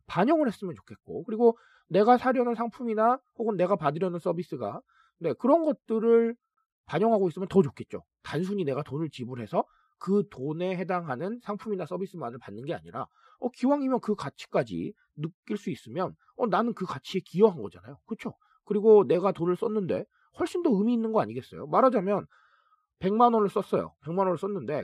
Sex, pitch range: male, 170-240 Hz